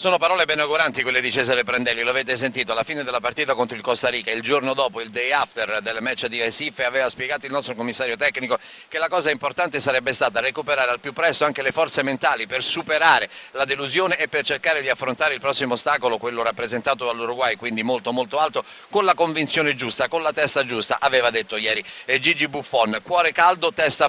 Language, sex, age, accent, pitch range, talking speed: Italian, male, 40-59, native, 130-160 Hz, 210 wpm